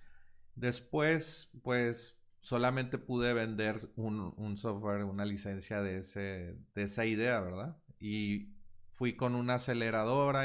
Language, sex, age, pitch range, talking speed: Spanish, male, 30-49, 95-120 Hz, 120 wpm